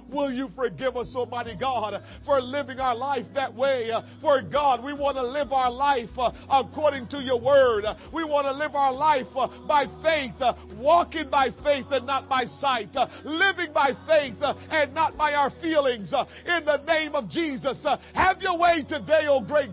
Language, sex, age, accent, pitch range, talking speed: English, male, 50-69, American, 275-345 Hz, 175 wpm